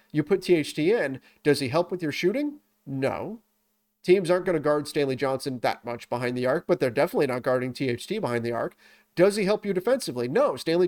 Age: 30-49